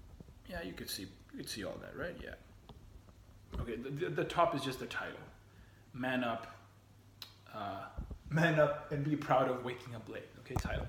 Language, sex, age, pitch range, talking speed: English, male, 30-49, 110-145 Hz, 180 wpm